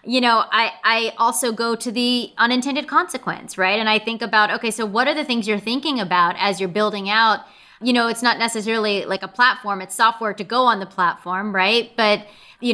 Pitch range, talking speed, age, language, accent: 210-245 Hz, 215 wpm, 30-49, English, American